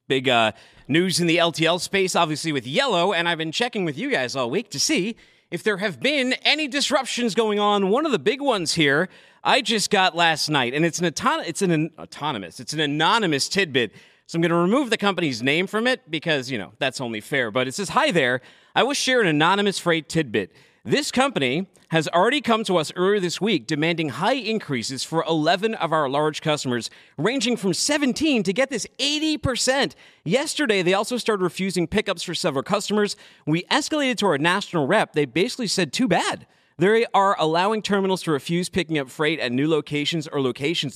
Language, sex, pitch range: English, male, 145-210 Hz